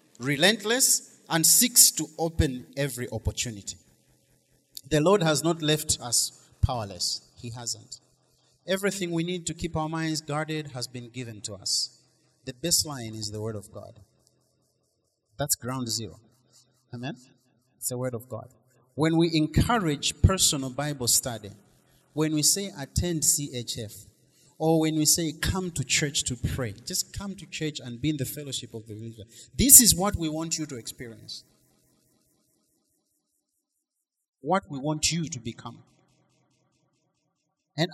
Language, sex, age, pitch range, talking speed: English, male, 30-49, 125-170 Hz, 145 wpm